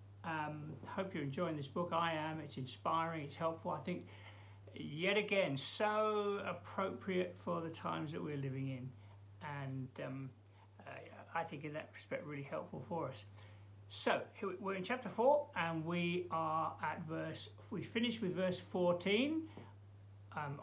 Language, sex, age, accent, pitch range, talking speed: English, male, 60-79, British, 125-210 Hz, 155 wpm